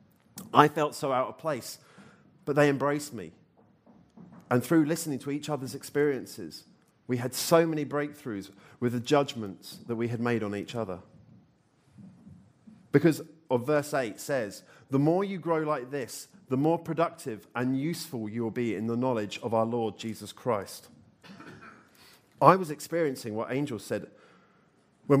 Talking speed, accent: 155 wpm, British